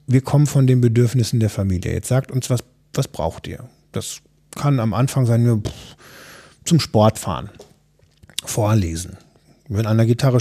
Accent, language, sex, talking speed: German, German, male, 155 wpm